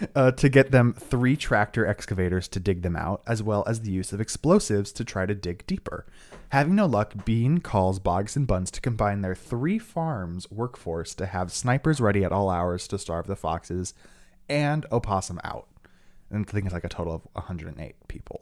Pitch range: 95-120 Hz